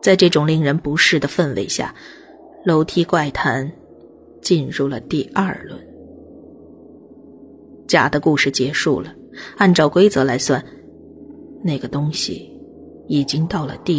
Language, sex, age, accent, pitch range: Chinese, female, 30-49, native, 140-180 Hz